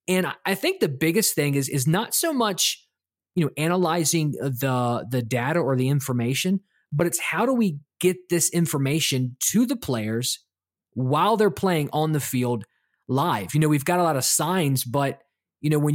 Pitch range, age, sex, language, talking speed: 135-180 Hz, 20-39, male, English, 190 wpm